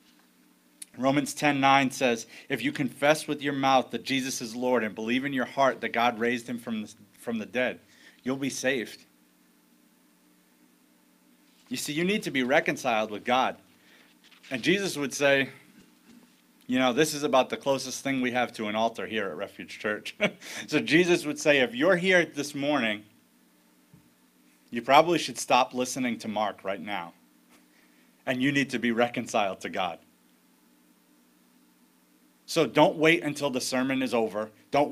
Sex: male